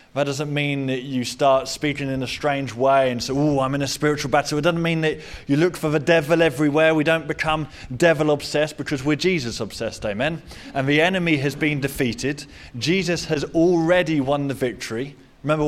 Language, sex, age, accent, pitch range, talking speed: English, male, 20-39, British, 135-160 Hz, 200 wpm